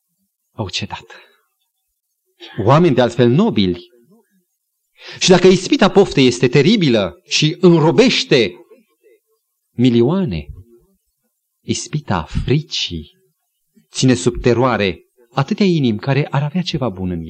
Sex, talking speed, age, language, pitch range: male, 95 wpm, 40-59, Romanian, 125-195 Hz